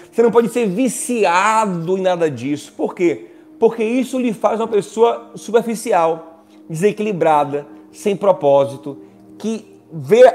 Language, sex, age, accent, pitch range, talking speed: Portuguese, male, 30-49, Brazilian, 170-250 Hz, 130 wpm